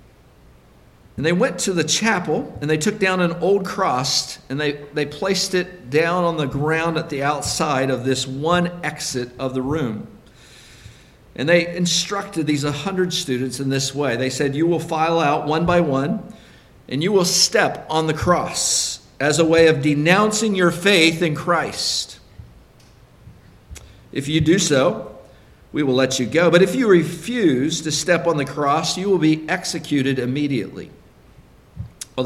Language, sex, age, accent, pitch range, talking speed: English, male, 50-69, American, 135-175 Hz, 165 wpm